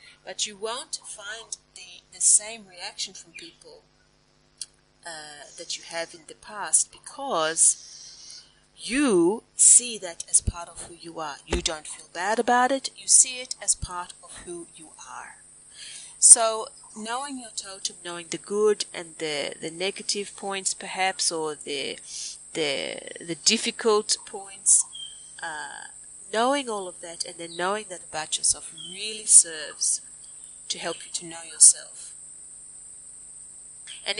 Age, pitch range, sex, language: 30-49, 175-235 Hz, female, English